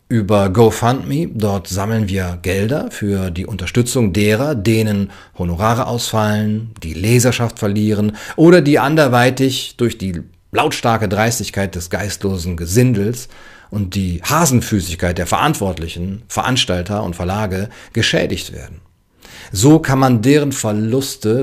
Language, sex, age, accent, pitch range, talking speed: German, male, 40-59, German, 95-120 Hz, 115 wpm